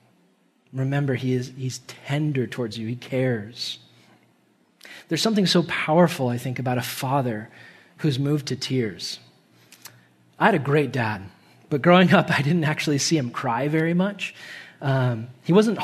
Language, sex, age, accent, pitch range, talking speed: English, male, 20-39, American, 135-180 Hz, 155 wpm